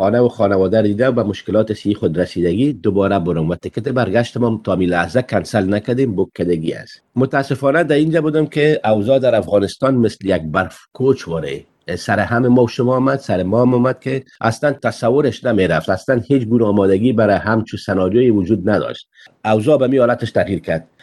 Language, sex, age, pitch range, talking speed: Persian, male, 50-69, 100-125 Hz, 175 wpm